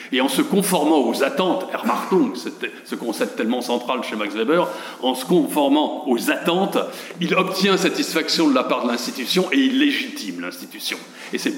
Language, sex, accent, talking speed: French, male, French, 170 wpm